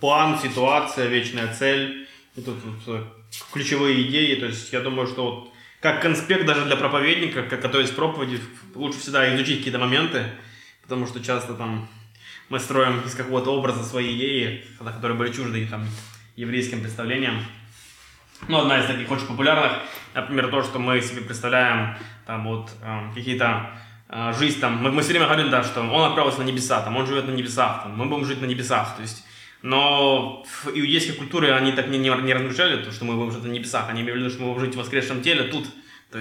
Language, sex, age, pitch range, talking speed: Russian, male, 20-39, 115-135 Hz, 165 wpm